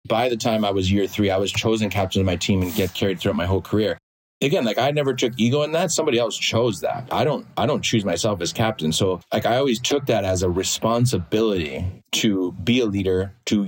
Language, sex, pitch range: English, male, 95-110 Hz